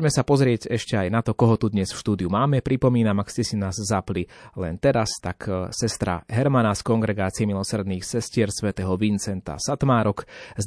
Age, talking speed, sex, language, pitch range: 30-49, 185 wpm, male, Slovak, 100-125 Hz